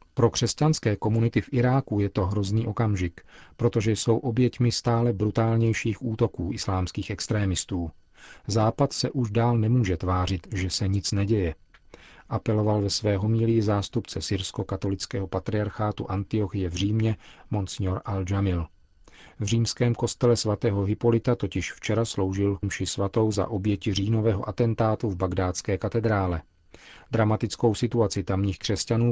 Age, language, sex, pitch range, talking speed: 40-59, Czech, male, 95-115 Hz, 125 wpm